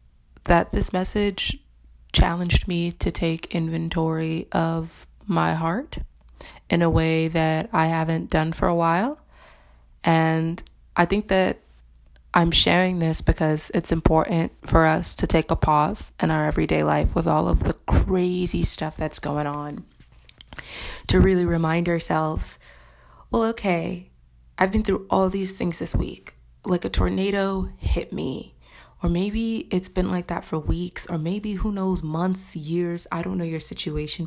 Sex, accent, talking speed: female, American, 155 wpm